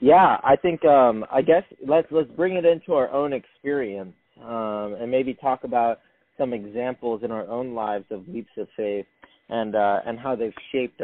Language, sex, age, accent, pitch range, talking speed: English, male, 20-39, American, 105-125 Hz, 190 wpm